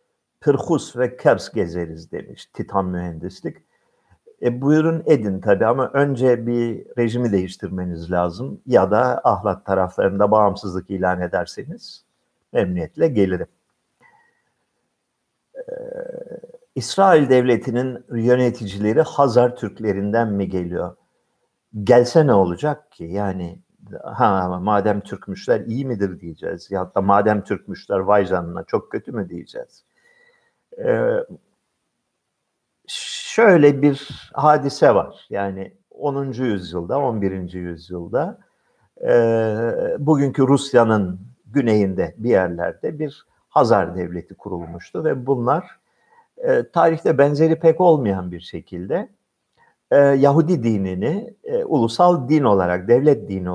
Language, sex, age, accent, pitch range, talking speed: Turkish, male, 50-69, native, 95-160 Hz, 105 wpm